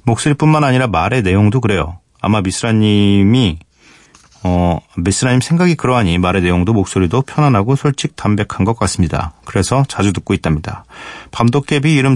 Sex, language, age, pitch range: male, Korean, 40-59, 90-130 Hz